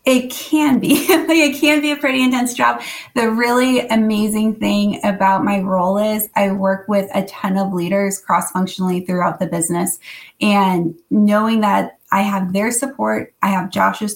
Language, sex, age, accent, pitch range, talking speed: English, female, 20-39, American, 185-210 Hz, 170 wpm